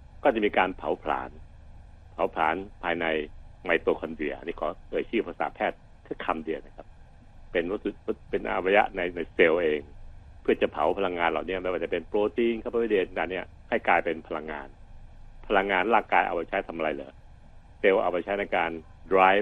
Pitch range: 80-95 Hz